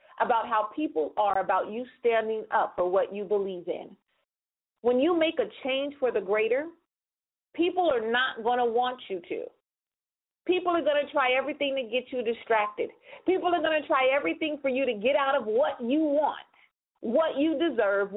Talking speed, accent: 190 wpm, American